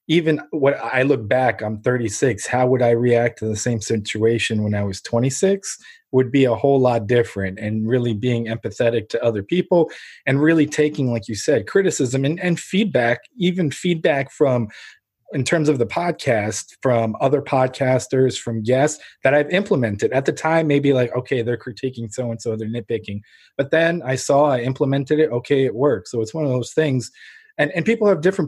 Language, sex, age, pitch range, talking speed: English, male, 20-39, 115-150 Hz, 190 wpm